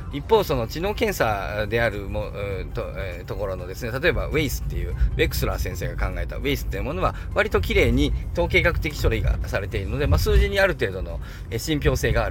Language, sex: Japanese, male